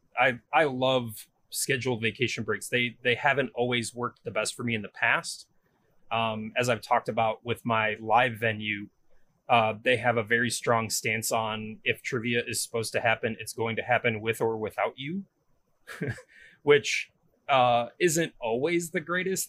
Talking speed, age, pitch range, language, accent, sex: 170 wpm, 30-49, 110-125 Hz, English, American, male